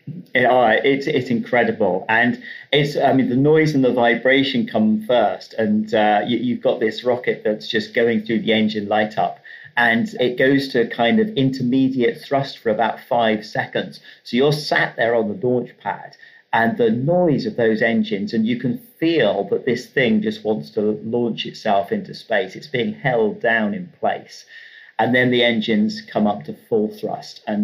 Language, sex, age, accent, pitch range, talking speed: English, male, 40-59, British, 110-180 Hz, 190 wpm